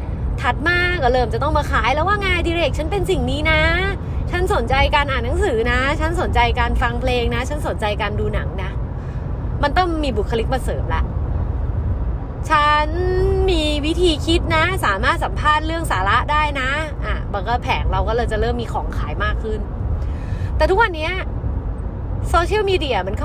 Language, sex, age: Thai, female, 20-39